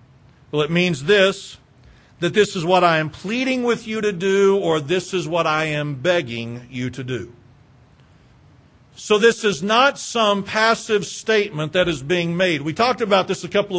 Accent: American